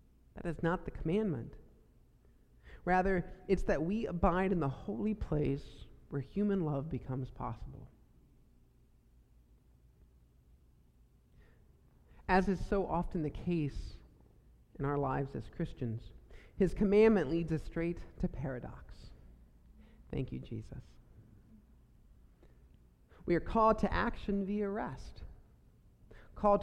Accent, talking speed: American, 110 wpm